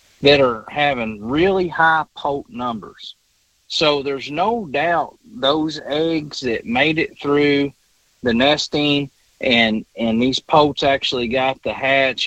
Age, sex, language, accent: 40-59, male, English, American